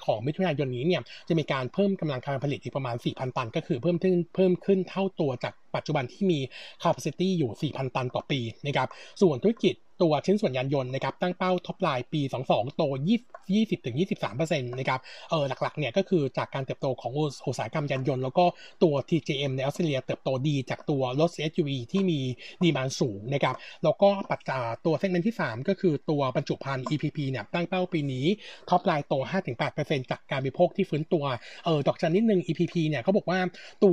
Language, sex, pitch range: Thai, male, 140-180 Hz